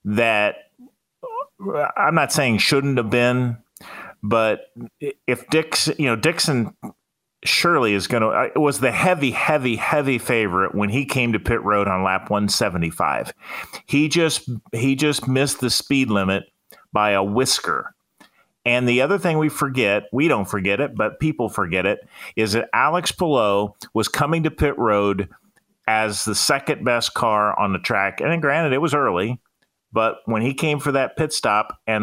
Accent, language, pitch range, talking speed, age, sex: American, English, 105-135 Hz, 165 wpm, 40-59, male